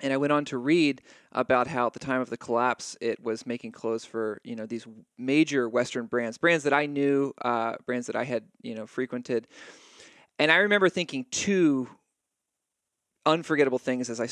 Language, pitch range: English, 120-140 Hz